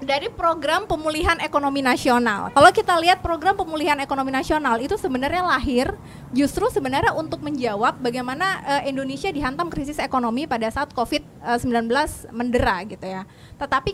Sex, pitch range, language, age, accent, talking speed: female, 240-315 Hz, Indonesian, 20-39, native, 135 wpm